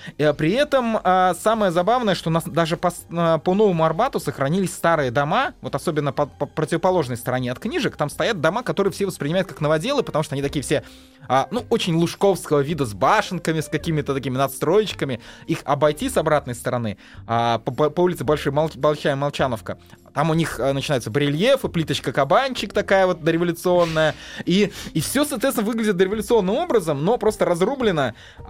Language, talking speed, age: Russian, 150 wpm, 20-39